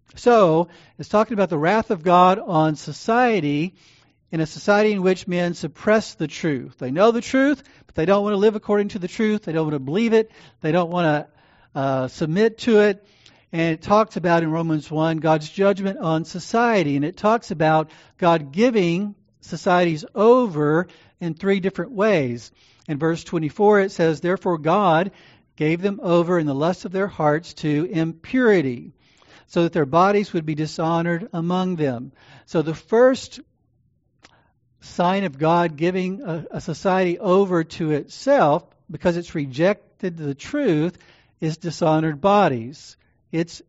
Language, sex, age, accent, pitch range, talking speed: English, male, 50-69, American, 155-195 Hz, 165 wpm